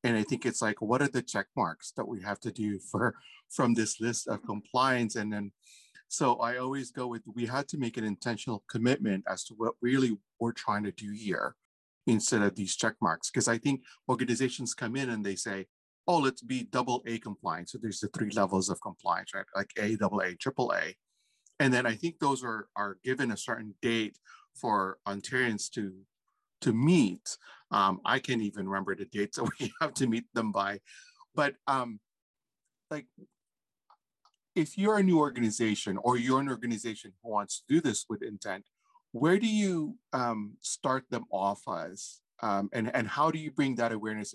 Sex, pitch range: male, 105-130 Hz